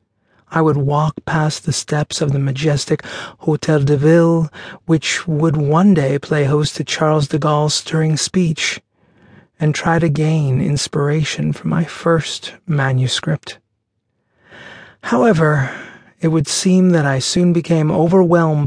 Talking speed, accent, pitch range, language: 135 wpm, American, 140-170 Hz, English